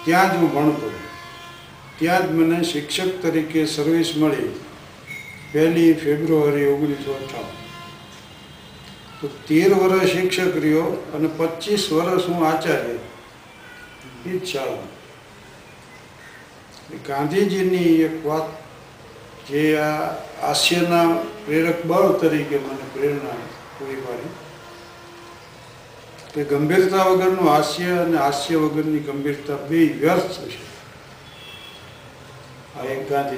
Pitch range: 145-180 Hz